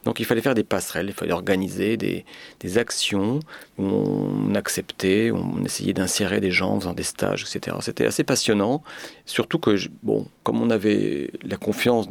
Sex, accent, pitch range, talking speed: male, French, 100-120 Hz, 190 wpm